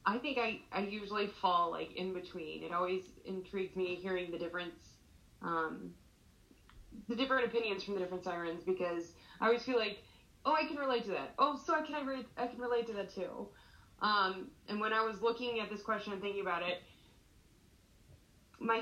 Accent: American